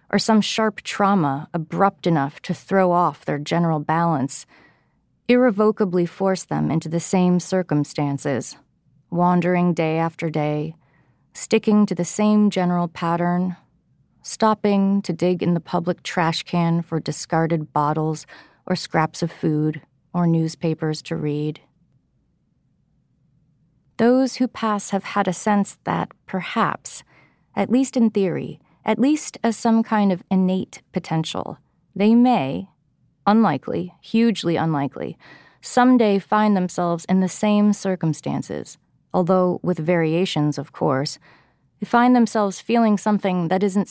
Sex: female